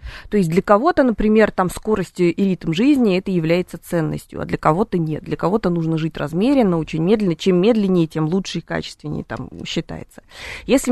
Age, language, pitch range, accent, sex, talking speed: 20-39, Russian, 175-235 Hz, native, female, 185 wpm